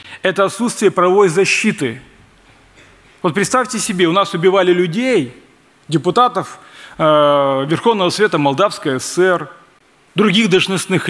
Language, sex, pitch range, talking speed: Russian, male, 140-205 Hz, 95 wpm